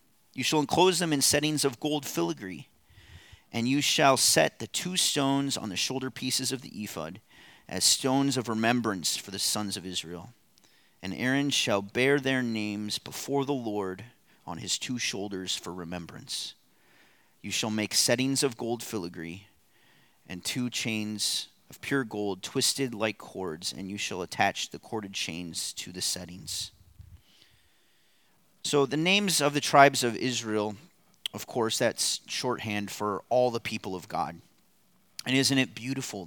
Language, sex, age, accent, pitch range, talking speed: English, male, 40-59, American, 100-130 Hz, 155 wpm